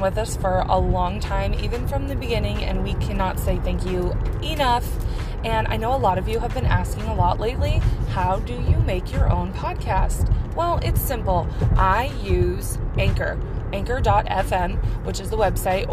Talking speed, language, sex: 185 wpm, English, female